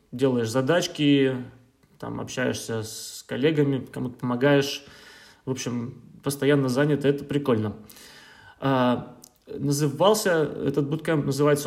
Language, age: Russian, 20-39